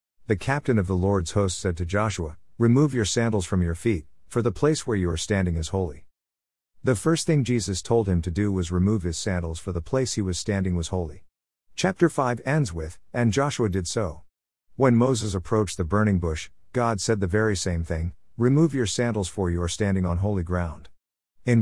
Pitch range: 85-115 Hz